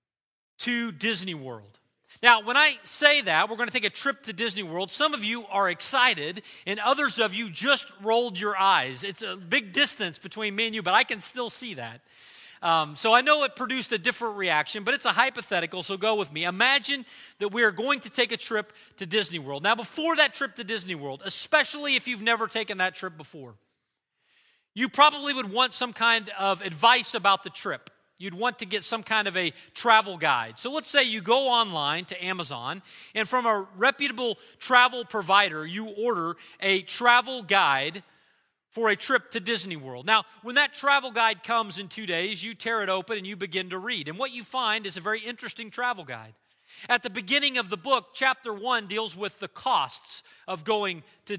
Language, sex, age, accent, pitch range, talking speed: English, male, 40-59, American, 190-250 Hz, 205 wpm